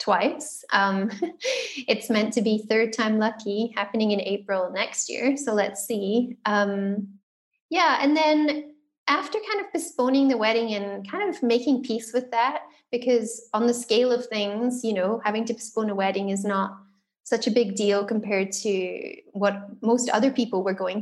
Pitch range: 205-245 Hz